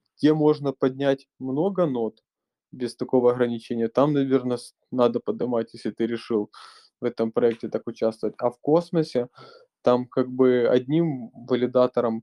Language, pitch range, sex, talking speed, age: Russian, 120-135 Hz, male, 135 wpm, 20-39